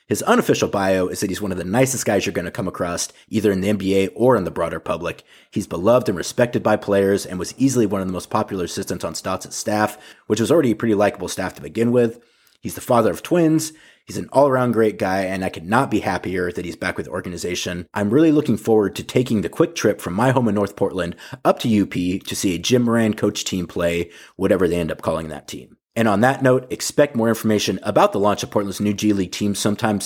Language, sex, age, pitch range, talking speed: English, male, 30-49, 100-120 Hz, 250 wpm